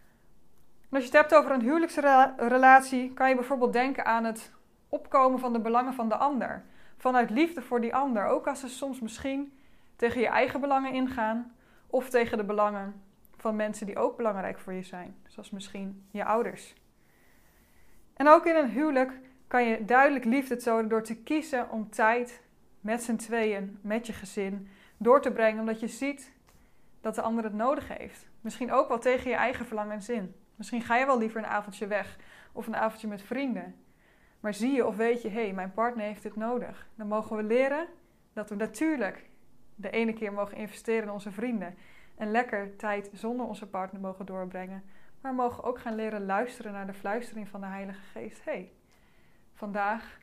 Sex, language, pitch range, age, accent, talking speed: female, Dutch, 205-255 Hz, 20-39, Dutch, 190 wpm